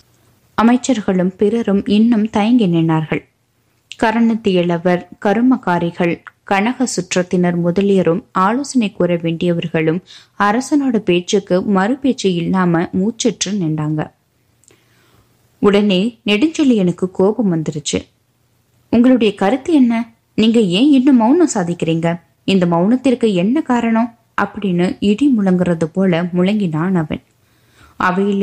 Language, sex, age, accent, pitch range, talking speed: Tamil, female, 20-39, native, 170-225 Hz, 90 wpm